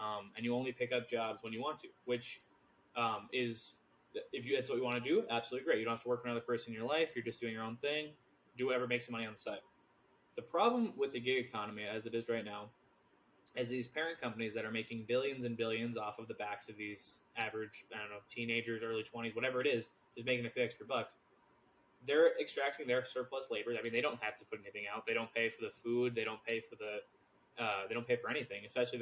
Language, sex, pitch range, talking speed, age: English, male, 115-135 Hz, 255 wpm, 20-39